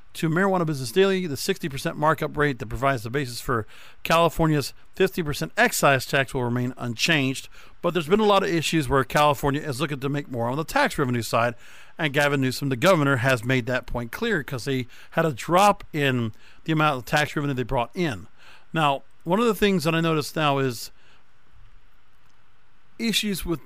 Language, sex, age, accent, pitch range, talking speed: English, male, 50-69, American, 135-180 Hz, 195 wpm